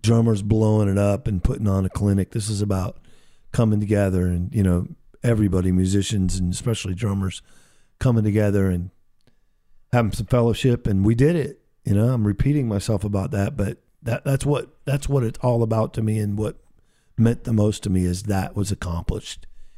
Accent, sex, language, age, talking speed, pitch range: American, male, English, 50-69, 185 wpm, 90-110 Hz